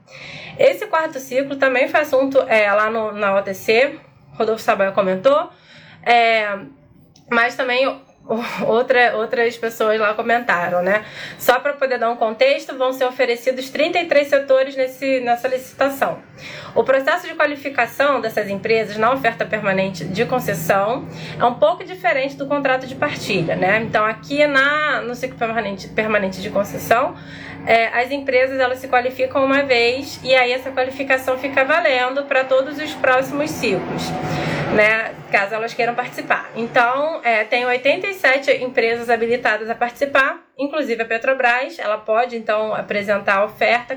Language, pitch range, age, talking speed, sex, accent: Portuguese, 230-280 Hz, 20-39, 145 wpm, female, Brazilian